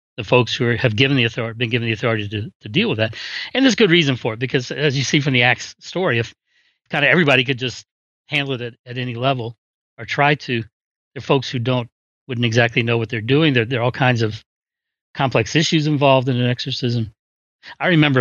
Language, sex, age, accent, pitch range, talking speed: English, male, 40-59, American, 115-140 Hz, 230 wpm